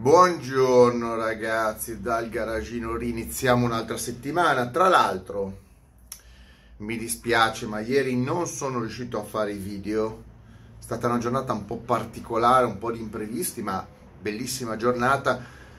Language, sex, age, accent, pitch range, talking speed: Italian, male, 30-49, native, 110-140 Hz, 130 wpm